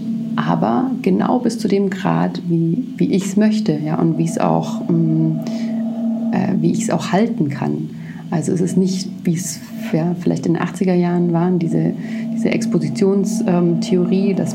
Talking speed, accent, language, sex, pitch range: 165 wpm, German, German, female, 170-225 Hz